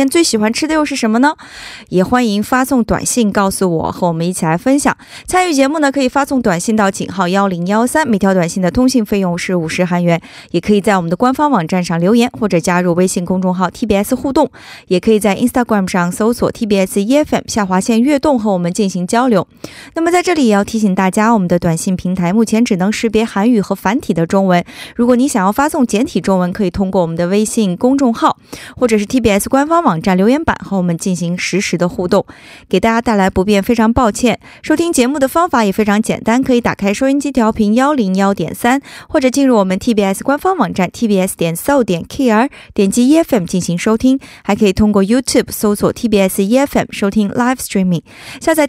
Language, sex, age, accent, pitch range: Korean, female, 20-39, Chinese, 185-260 Hz